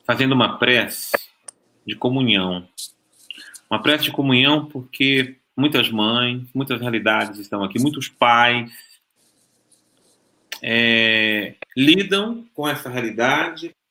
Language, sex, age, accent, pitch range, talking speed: Portuguese, male, 40-59, Brazilian, 125-155 Hz, 100 wpm